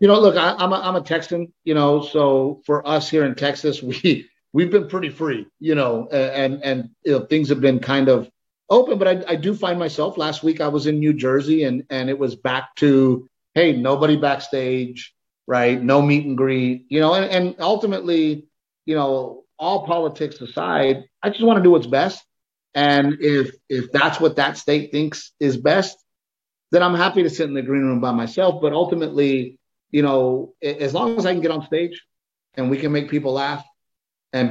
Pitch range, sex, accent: 130-160 Hz, male, American